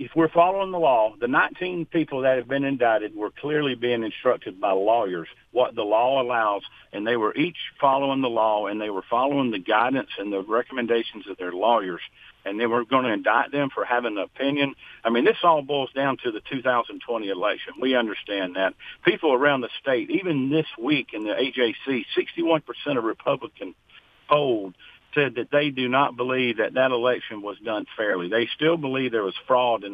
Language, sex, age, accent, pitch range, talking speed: English, male, 50-69, American, 120-155 Hz, 200 wpm